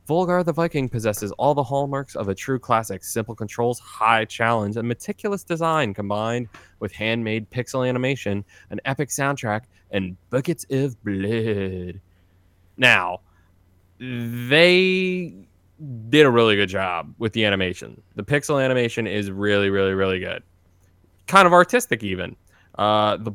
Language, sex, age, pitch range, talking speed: English, male, 20-39, 95-115 Hz, 140 wpm